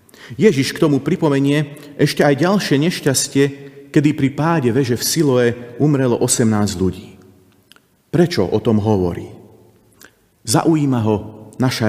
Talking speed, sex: 120 wpm, male